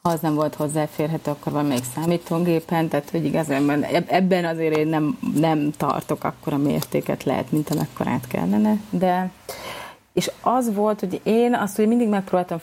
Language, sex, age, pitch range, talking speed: Hungarian, female, 30-49, 155-175 Hz, 165 wpm